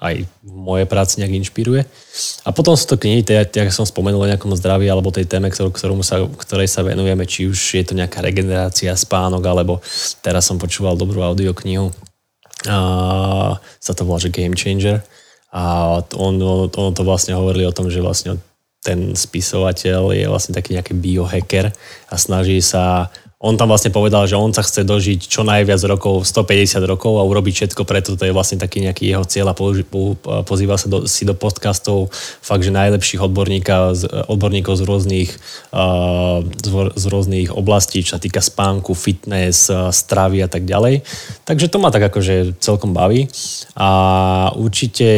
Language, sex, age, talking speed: Slovak, male, 20-39, 165 wpm